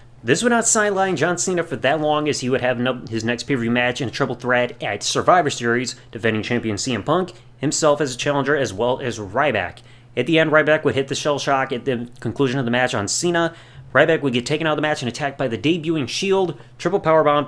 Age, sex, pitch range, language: 30-49, male, 120-150 Hz, English